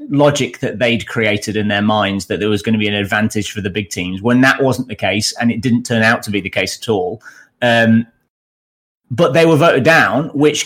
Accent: British